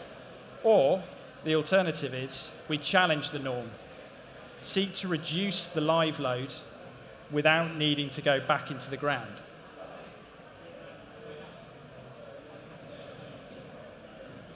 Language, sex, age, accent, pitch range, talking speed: English, male, 30-49, British, 145-165 Hz, 95 wpm